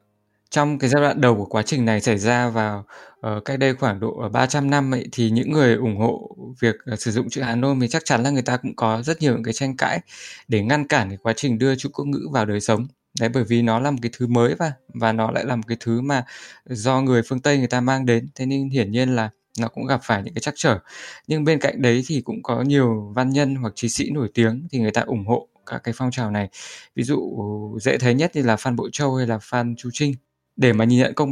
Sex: male